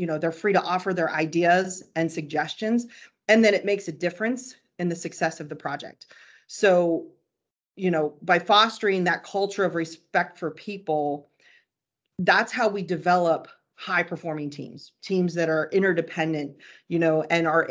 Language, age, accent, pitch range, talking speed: English, 30-49, American, 155-185 Hz, 165 wpm